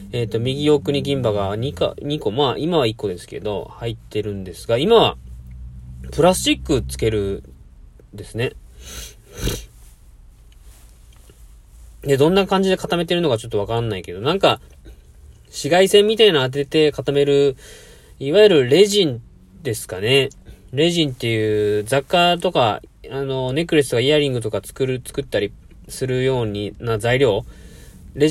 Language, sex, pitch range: Japanese, male, 100-155 Hz